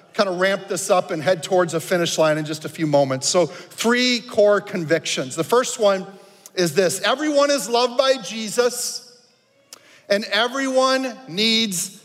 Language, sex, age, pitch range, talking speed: English, male, 40-59, 195-255 Hz, 165 wpm